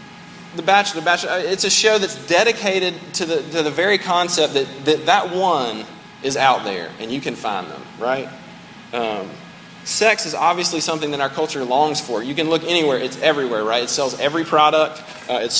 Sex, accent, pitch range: male, American, 145-195 Hz